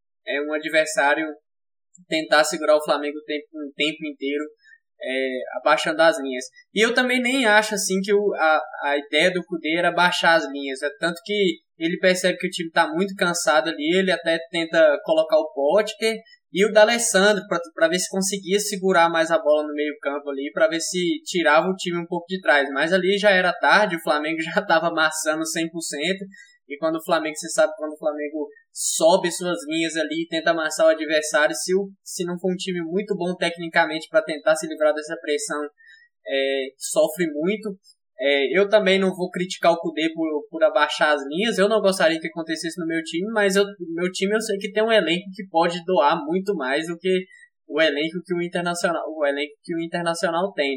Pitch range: 155-195 Hz